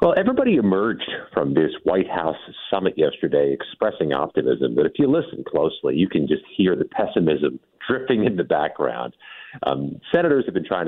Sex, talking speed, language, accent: male, 170 wpm, English, American